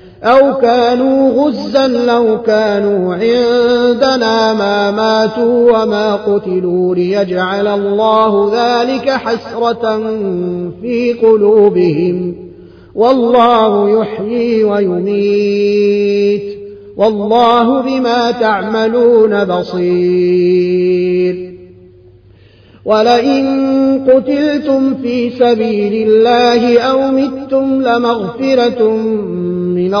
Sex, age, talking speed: male, 30-49, 65 wpm